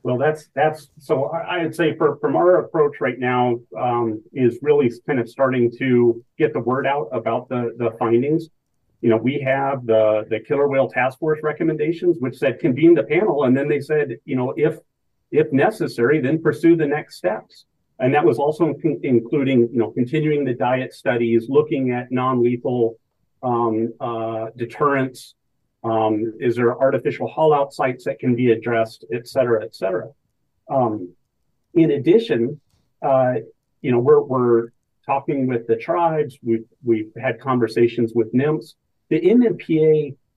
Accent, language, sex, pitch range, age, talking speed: American, English, male, 115-155 Hz, 40-59, 165 wpm